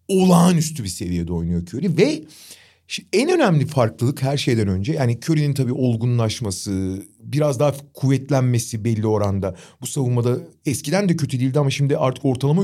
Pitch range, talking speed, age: 115-175 Hz, 145 wpm, 40-59